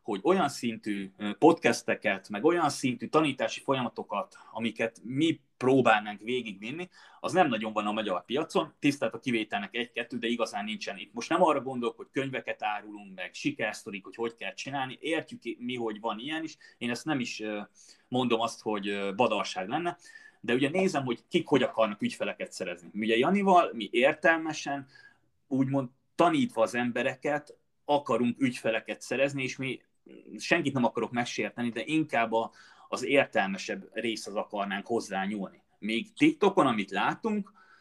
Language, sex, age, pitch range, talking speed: Hungarian, male, 30-49, 115-160 Hz, 150 wpm